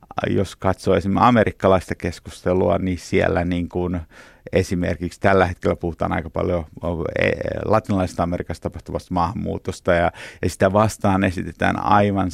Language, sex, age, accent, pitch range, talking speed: Finnish, male, 50-69, native, 85-100 Hz, 115 wpm